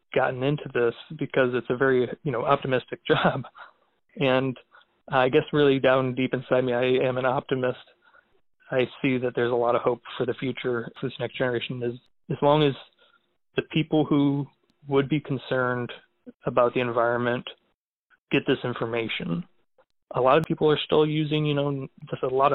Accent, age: American, 20-39